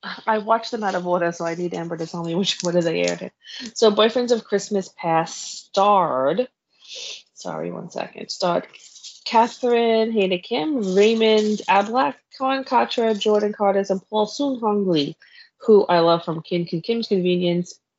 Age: 20-39